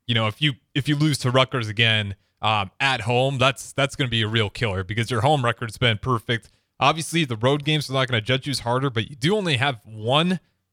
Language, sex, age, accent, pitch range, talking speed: English, male, 30-49, American, 115-150 Hz, 250 wpm